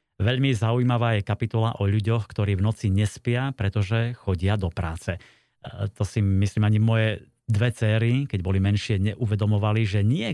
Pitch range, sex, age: 100-115 Hz, male, 30-49